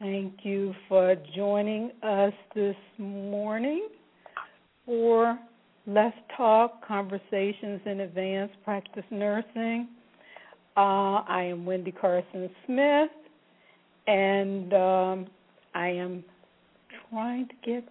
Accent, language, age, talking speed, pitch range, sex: American, English, 60-79, 95 wpm, 185-220 Hz, female